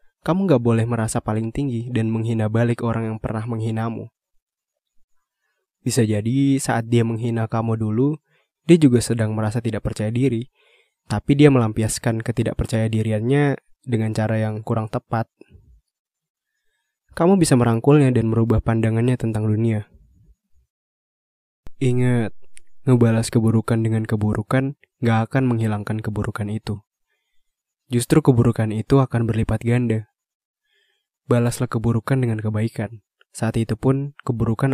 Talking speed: 120 wpm